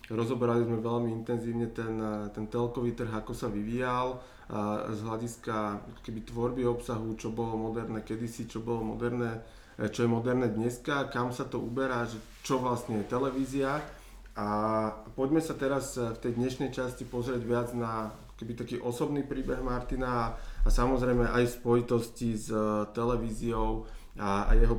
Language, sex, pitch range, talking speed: Slovak, male, 110-125 Hz, 150 wpm